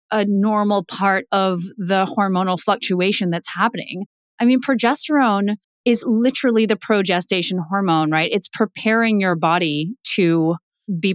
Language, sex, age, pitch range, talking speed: English, female, 30-49, 175-220 Hz, 130 wpm